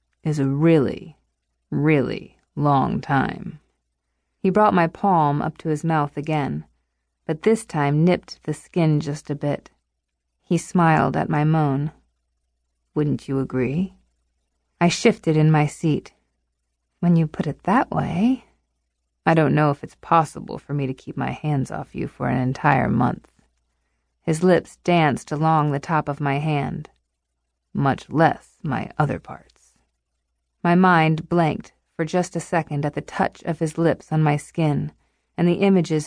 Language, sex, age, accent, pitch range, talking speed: English, female, 30-49, American, 125-180 Hz, 155 wpm